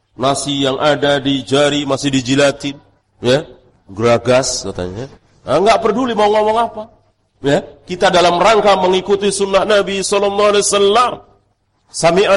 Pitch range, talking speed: 125-190 Hz, 120 wpm